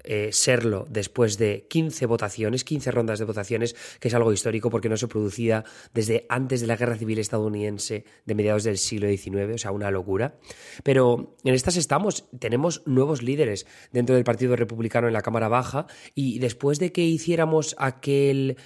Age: 20-39